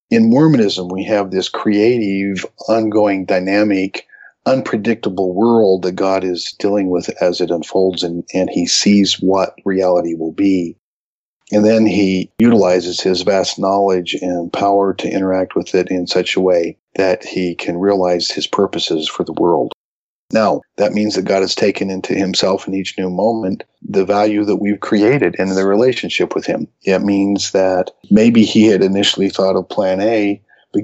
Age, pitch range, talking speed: 50-69, 95-105 Hz, 170 wpm